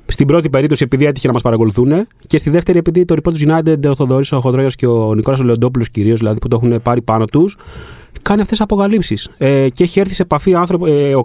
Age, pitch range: 30-49, 120-185 Hz